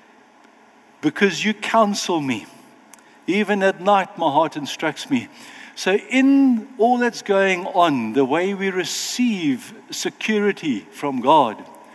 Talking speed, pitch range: 120 wpm, 180-250 Hz